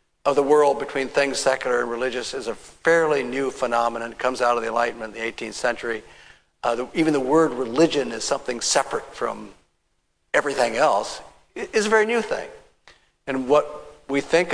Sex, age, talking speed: male, 50-69, 185 wpm